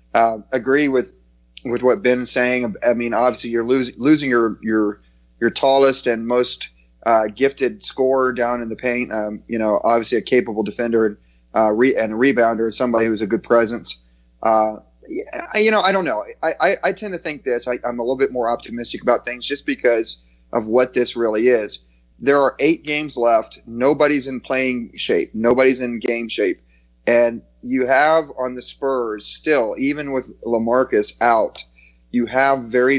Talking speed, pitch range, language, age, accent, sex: 180 wpm, 110-125 Hz, English, 30-49, American, male